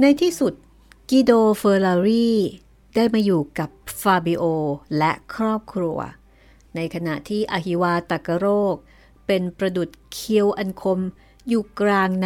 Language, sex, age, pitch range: Thai, female, 60-79, 170-220 Hz